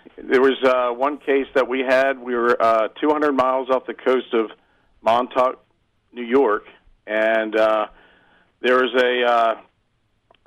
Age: 50-69